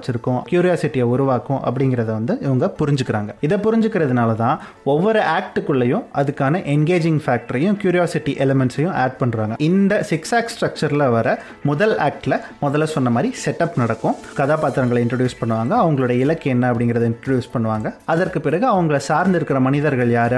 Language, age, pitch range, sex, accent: Tamil, 30-49, 125-165 Hz, male, native